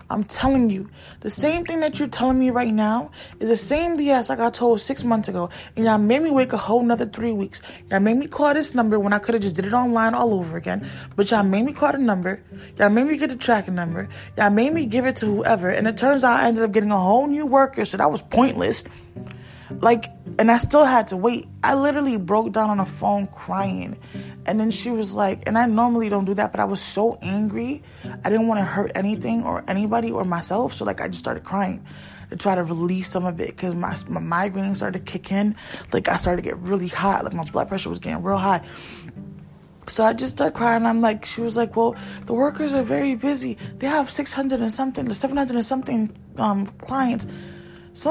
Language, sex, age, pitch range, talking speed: English, female, 20-39, 195-255 Hz, 235 wpm